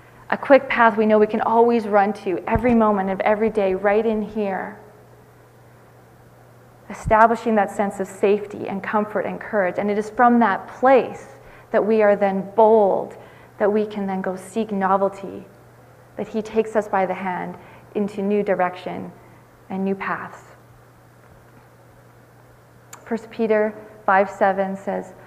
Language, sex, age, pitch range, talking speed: English, female, 30-49, 195-220 Hz, 150 wpm